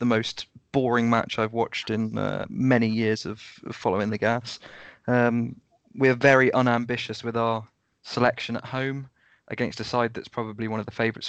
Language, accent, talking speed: English, British, 170 wpm